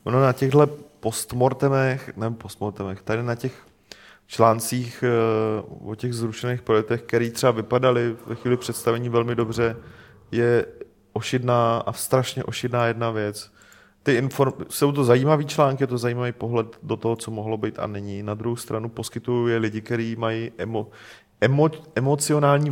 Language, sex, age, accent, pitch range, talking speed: Czech, male, 30-49, native, 105-125 Hz, 150 wpm